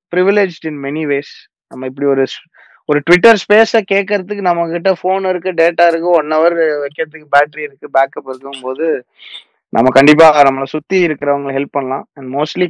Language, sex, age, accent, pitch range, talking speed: Tamil, male, 20-39, native, 140-180 Hz, 155 wpm